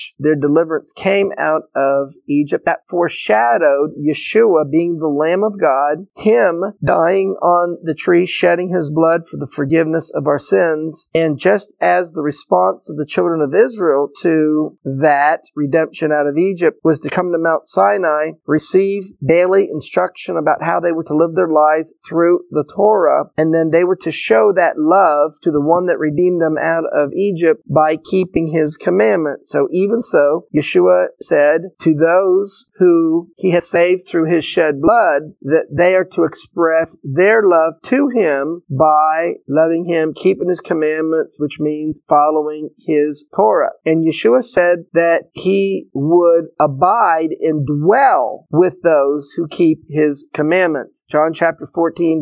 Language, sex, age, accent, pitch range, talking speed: English, male, 40-59, American, 150-180 Hz, 160 wpm